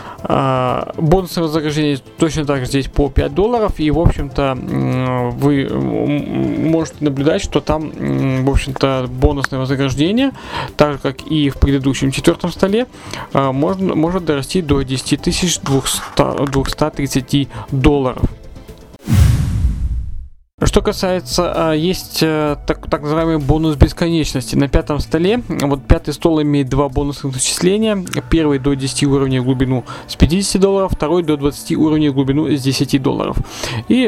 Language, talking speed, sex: Russian, 125 wpm, male